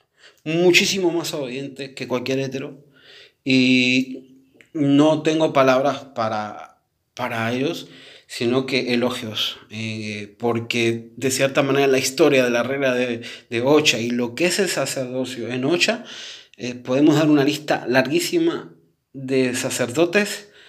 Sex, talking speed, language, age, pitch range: male, 130 wpm, Spanish, 30-49, 120-140 Hz